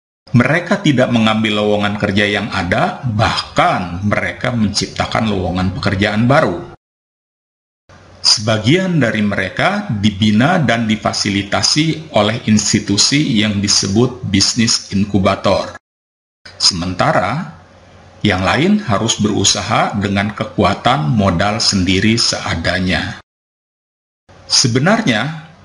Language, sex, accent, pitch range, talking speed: Indonesian, male, native, 95-120 Hz, 85 wpm